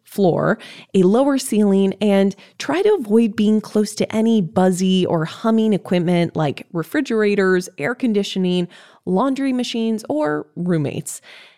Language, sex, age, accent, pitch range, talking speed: English, female, 20-39, American, 160-220 Hz, 125 wpm